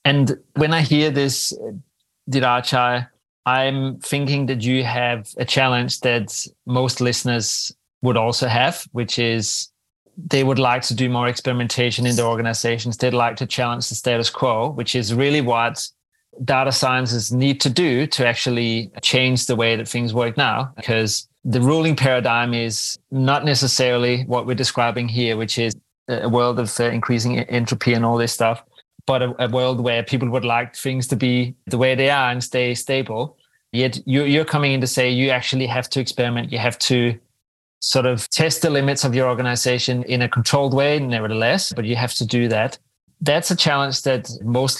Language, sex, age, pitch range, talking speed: English, male, 30-49, 120-130 Hz, 180 wpm